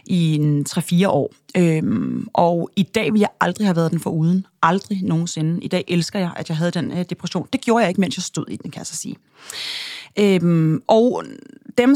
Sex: female